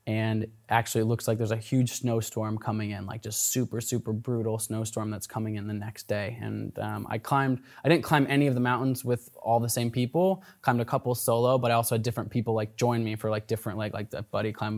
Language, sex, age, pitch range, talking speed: English, male, 20-39, 115-140 Hz, 245 wpm